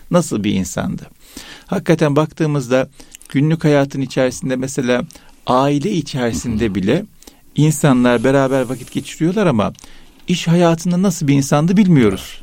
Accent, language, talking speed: native, Turkish, 110 wpm